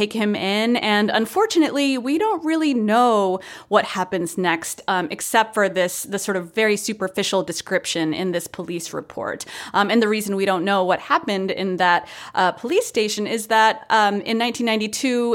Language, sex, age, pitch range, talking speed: English, female, 30-49, 175-225 Hz, 170 wpm